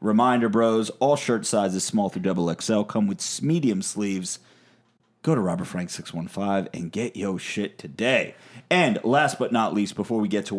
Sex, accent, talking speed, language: male, American, 180 wpm, English